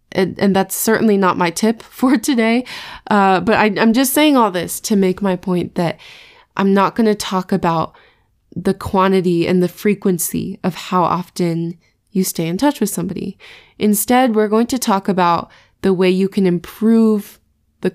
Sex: female